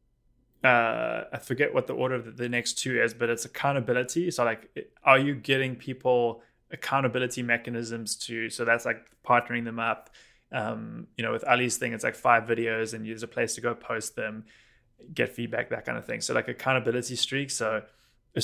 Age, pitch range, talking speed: 20-39, 115-125 Hz, 190 wpm